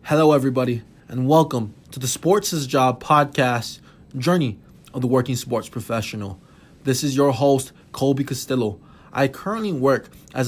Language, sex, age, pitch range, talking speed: English, male, 20-39, 115-155 Hz, 155 wpm